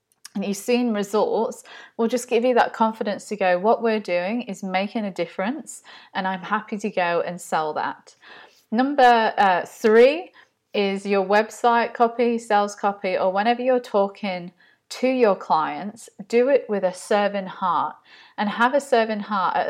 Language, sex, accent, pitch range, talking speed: English, female, British, 185-225 Hz, 170 wpm